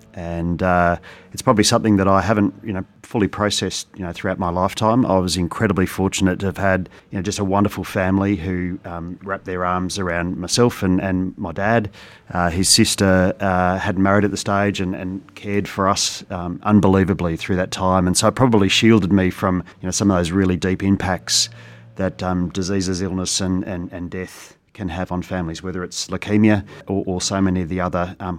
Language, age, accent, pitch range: English, 40-59, Australian, 90-100 Hz